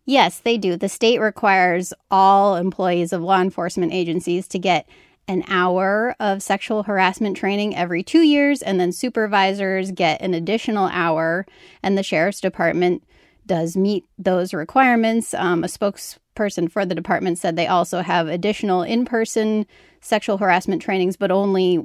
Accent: American